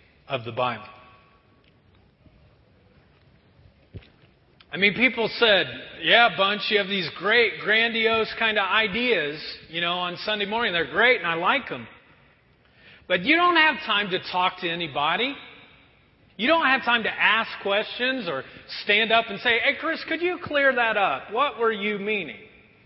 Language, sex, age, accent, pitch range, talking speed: English, male, 40-59, American, 195-260 Hz, 155 wpm